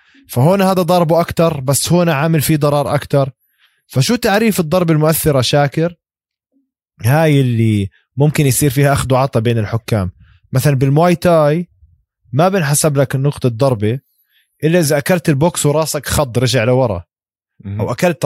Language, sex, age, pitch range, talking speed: Arabic, male, 20-39, 120-165 Hz, 135 wpm